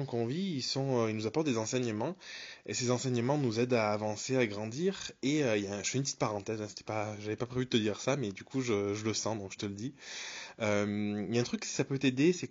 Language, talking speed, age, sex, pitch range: French, 295 wpm, 20-39, male, 105-135 Hz